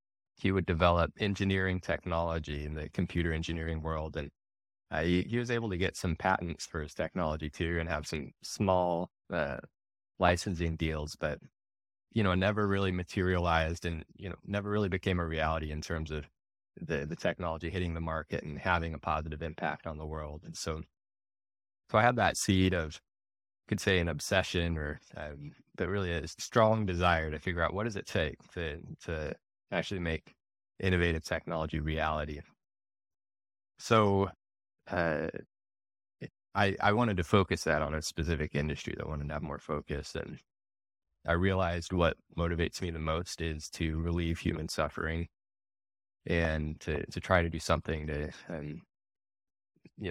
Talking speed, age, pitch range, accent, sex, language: 165 wpm, 20-39, 80-95 Hz, American, male, English